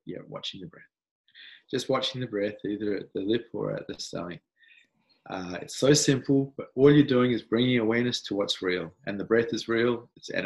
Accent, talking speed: Australian, 205 wpm